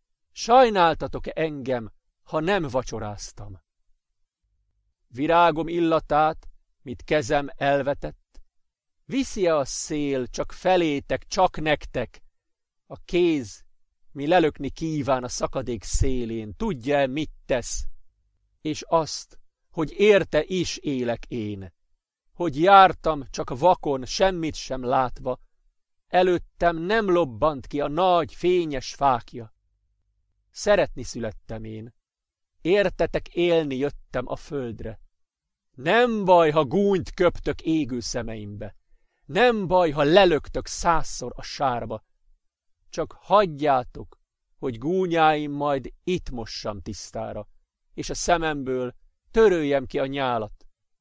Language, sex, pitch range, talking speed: Hungarian, male, 115-170 Hz, 100 wpm